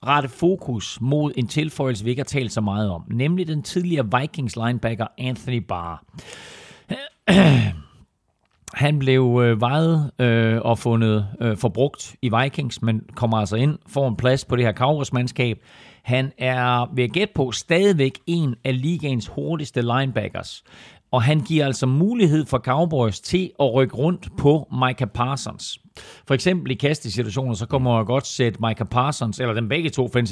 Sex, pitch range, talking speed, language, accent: male, 115-140 Hz, 165 wpm, Danish, native